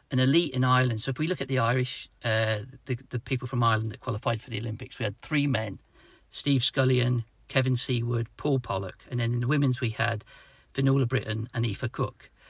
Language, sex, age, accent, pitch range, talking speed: English, male, 50-69, British, 115-130 Hz, 210 wpm